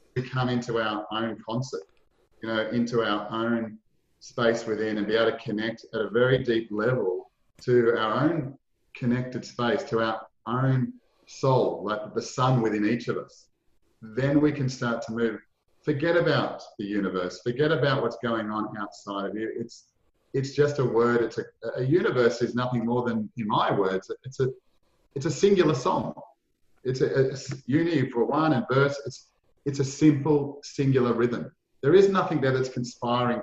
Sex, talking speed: male, 180 wpm